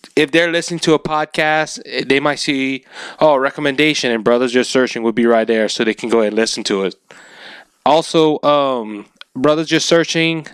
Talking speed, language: 195 wpm, English